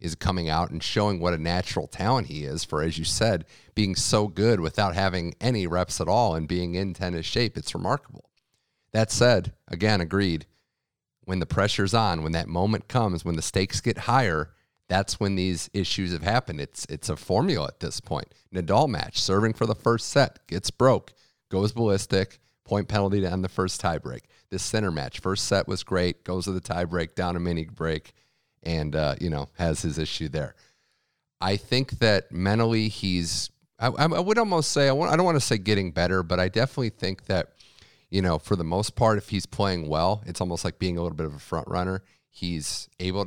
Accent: American